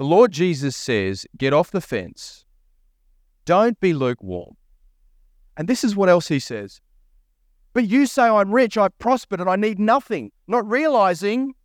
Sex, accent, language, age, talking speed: male, Australian, English, 30-49, 160 wpm